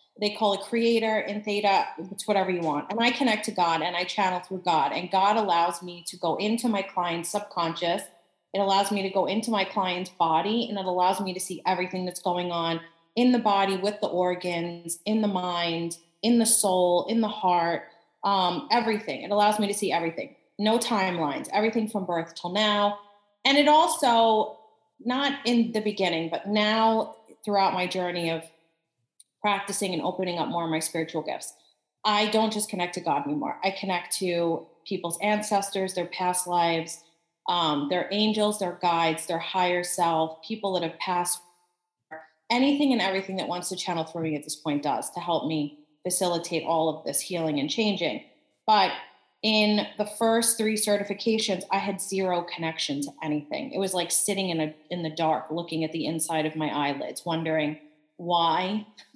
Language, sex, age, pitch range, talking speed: English, female, 30-49, 170-210 Hz, 185 wpm